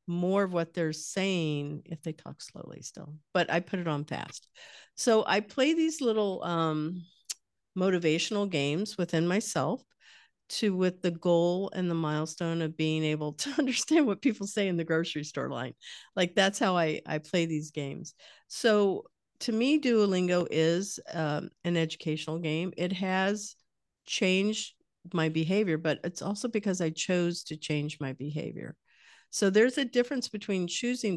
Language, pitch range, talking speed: English, 155-200 Hz, 160 wpm